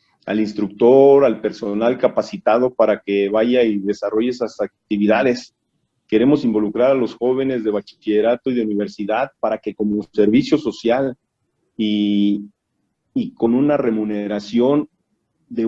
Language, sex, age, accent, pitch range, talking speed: Spanish, male, 40-59, Mexican, 110-140 Hz, 125 wpm